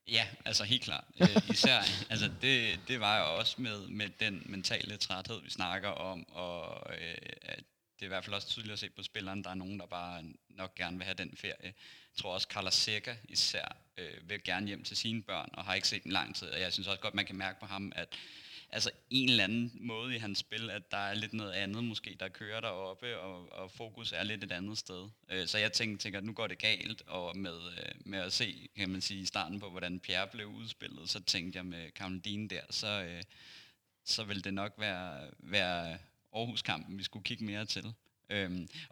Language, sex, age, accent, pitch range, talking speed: Danish, male, 20-39, native, 95-110 Hz, 230 wpm